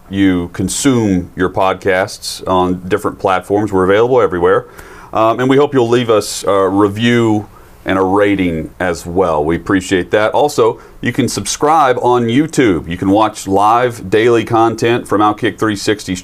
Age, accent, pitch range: 40-59, American, 90-125 Hz